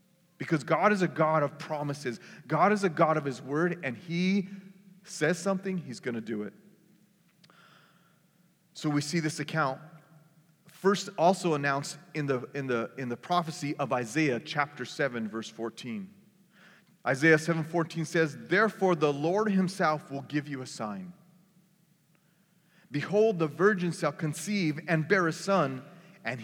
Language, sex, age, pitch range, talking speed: English, male, 30-49, 140-180 Hz, 150 wpm